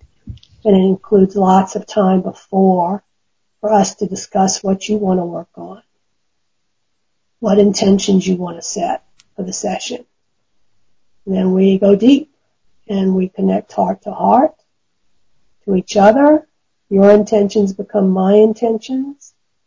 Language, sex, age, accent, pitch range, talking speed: English, female, 50-69, American, 185-205 Hz, 135 wpm